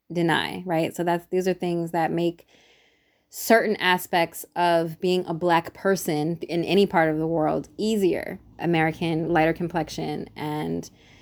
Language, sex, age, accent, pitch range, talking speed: English, female, 20-39, American, 170-200 Hz, 145 wpm